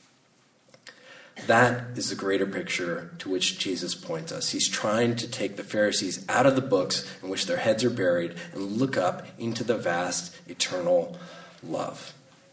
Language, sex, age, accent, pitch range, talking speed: English, male, 30-49, American, 115-170 Hz, 165 wpm